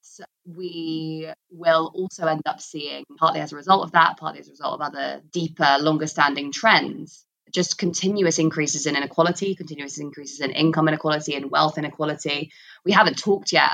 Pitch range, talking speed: 145-165 Hz, 180 wpm